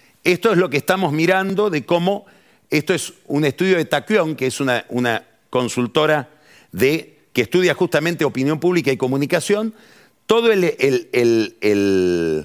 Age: 50-69